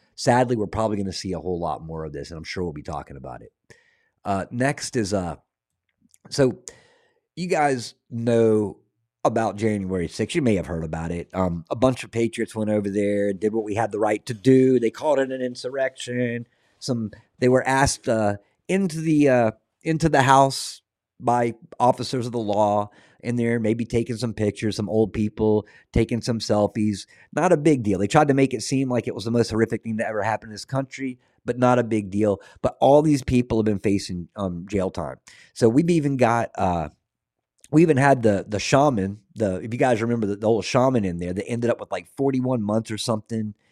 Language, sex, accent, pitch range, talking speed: English, male, American, 105-125 Hz, 215 wpm